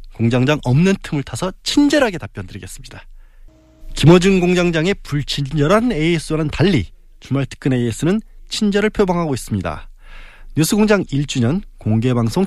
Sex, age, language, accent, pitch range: male, 20-39, Korean, native, 120-180 Hz